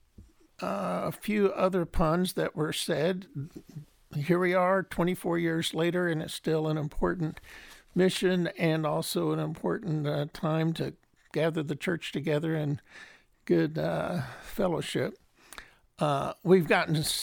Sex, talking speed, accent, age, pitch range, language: male, 130 wpm, American, 60-79, 155-180 Hz, English